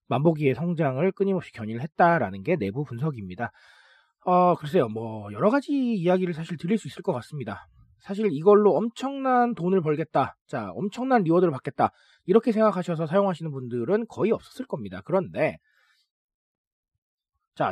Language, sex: Korean, male